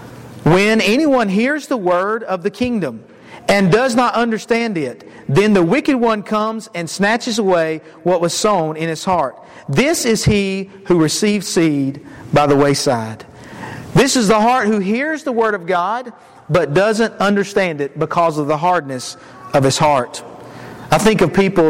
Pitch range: 160-230 Hz